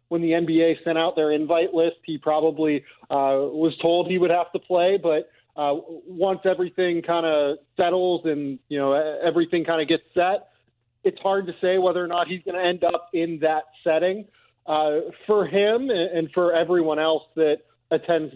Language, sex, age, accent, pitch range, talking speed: English, male, 30-49, American, 150-180 Hz, 185 wpm